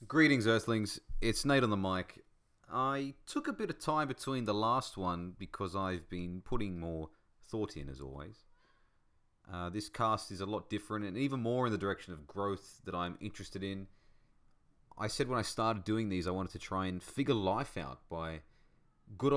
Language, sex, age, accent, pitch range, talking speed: English, male, 30-49, Australian, 95-120 Hz, 190 wpm